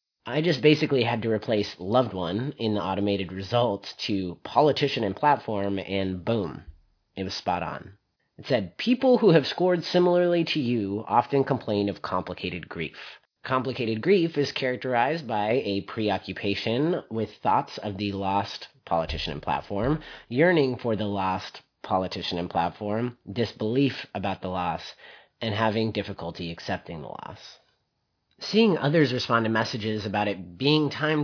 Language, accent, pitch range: English, American, 100-150 Hz